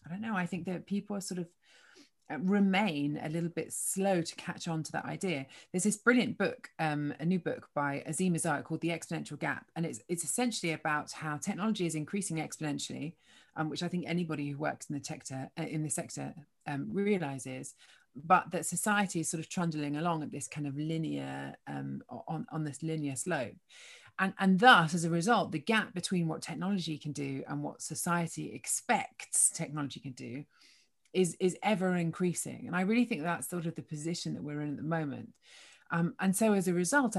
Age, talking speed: 30-49, 200 wpm